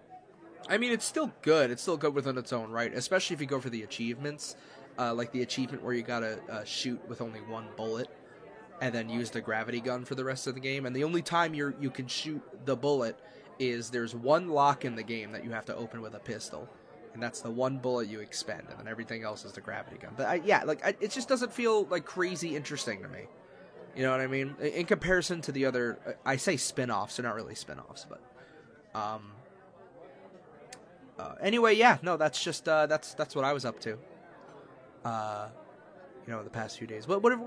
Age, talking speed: 20-39, 230 wpm